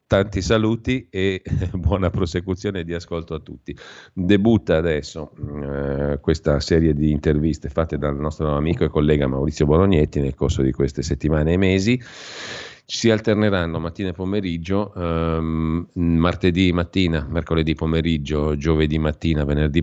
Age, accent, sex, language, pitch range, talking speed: 40-59, native, male, Italian, 75-95 Hz, 135 wpm